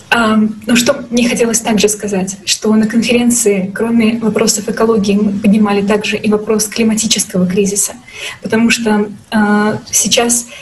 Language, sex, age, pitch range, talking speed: Russian, female, 20-39, 205-230 Hz, 130 wpm